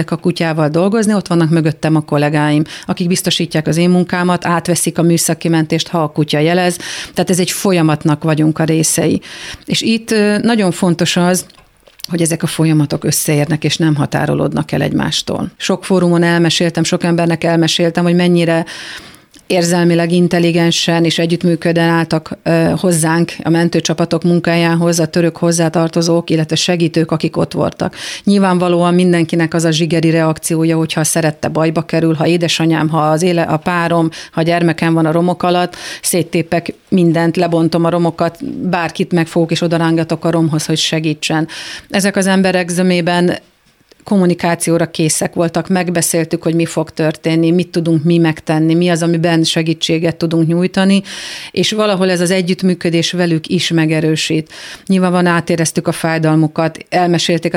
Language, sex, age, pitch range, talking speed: Hungarian, female, 40-59, 160-175 Hz, 145 wpm